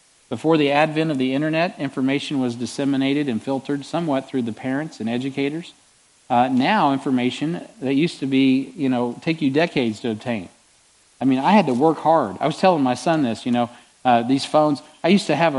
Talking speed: 205 wpm